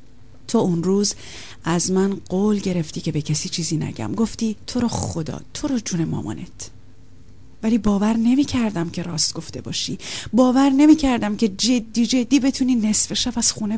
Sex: female